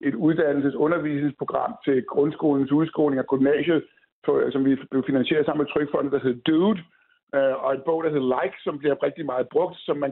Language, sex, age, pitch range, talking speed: Danish, male, 60-79, 155-220 Hz, 170 wpm